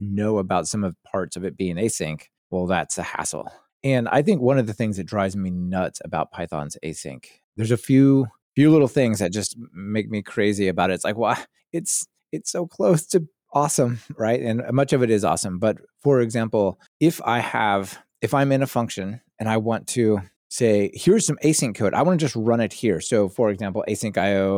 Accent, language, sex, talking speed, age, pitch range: American, English, male, 215 wpm, 30-49, 100-140 Hz